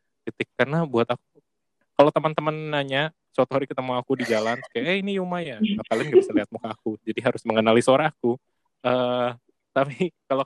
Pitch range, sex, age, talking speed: 115-155 Hz, male, 20-39, 180 wpm